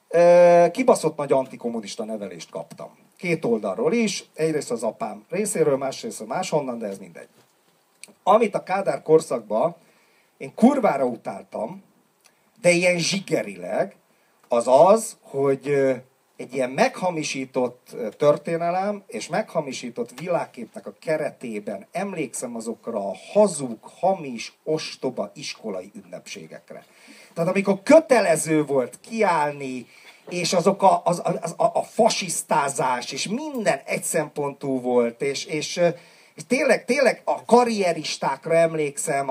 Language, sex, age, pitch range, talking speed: Hungarian, male, 40-59, 145-205 Hz, 110 wpm